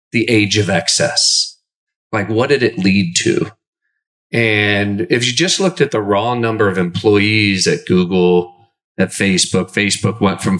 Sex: male